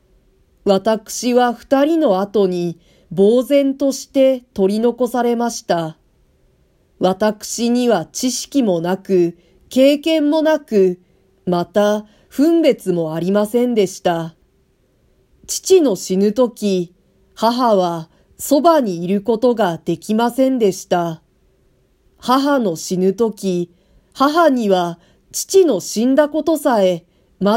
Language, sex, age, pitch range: Japanese, female, 40-59, 185-255 Hz